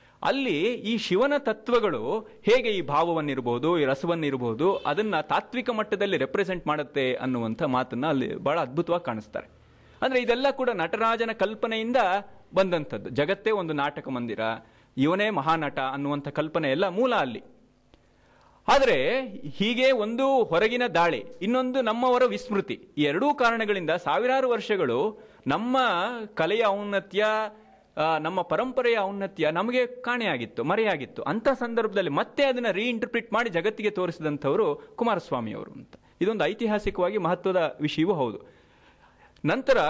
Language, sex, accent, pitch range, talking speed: Kannada, male, native, 150-230 Hz, 110 wpm